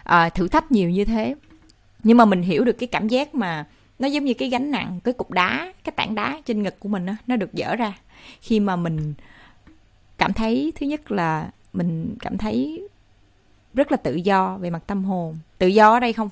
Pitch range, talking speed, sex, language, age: 180-235 Hz, 220 wpm, female, Vietnamese, 20-39